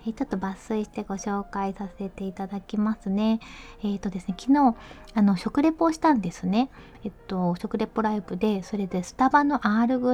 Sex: female